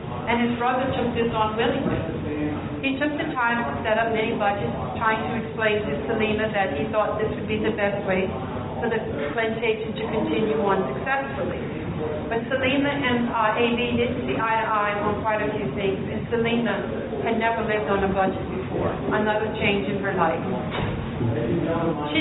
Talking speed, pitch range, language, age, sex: 180 wpm, 210-240 Hz, English, 40-59, female